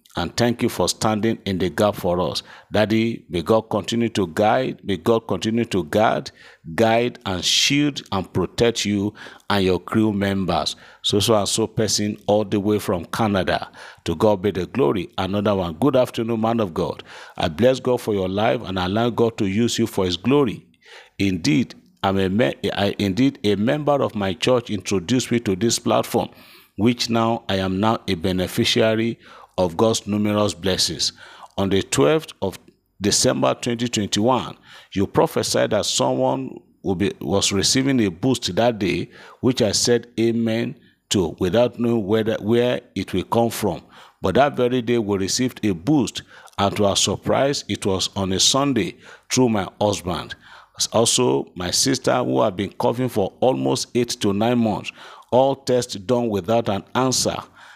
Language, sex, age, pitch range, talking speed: English, male, 50-69, 95-120 Hz, 170 wpm